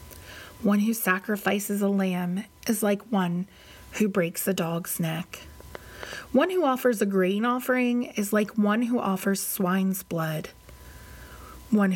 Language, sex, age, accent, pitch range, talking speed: English, female, 30-49, American, 185-225 Hz, 135 wpm